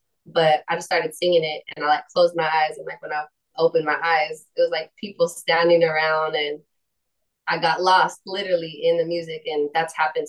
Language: English